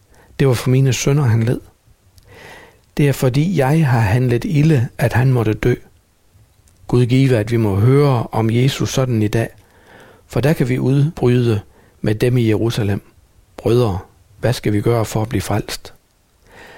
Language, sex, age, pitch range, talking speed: Danish, male, 60-79, 105-130 Hz, 170 wpm